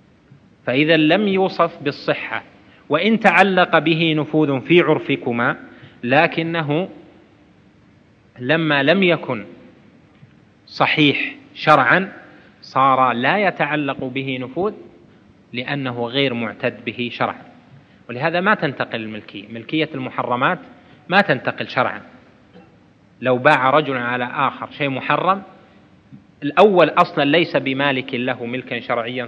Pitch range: 130-165 Hz